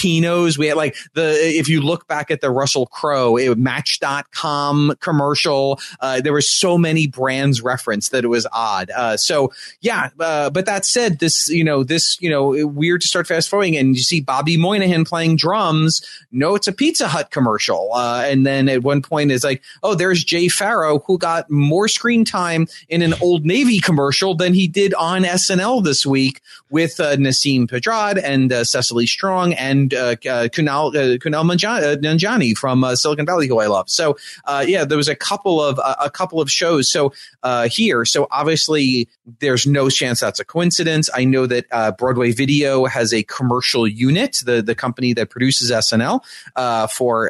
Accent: American